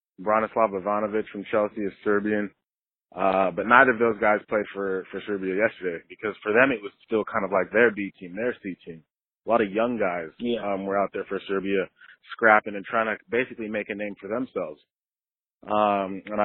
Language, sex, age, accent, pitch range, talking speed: English, male, 20-39, American, 100-120 Hz, 200 wpm